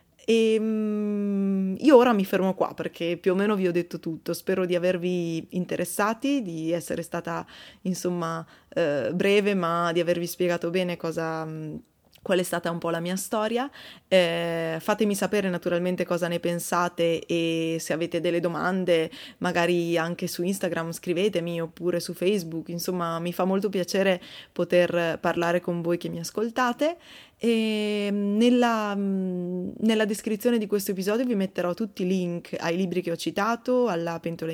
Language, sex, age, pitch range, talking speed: Italian, female, 20-39, 170-210 Hz, 155 wpm